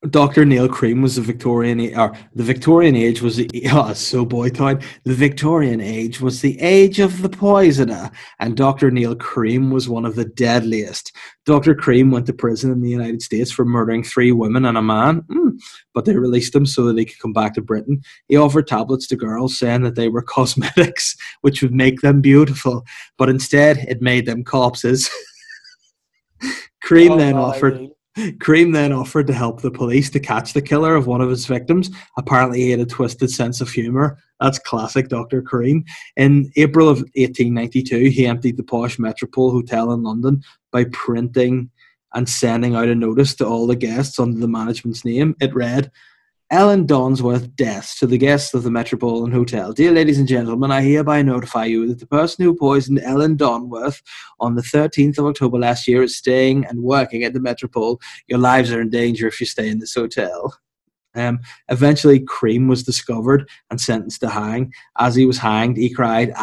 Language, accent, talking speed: English, Irish, 190 wpm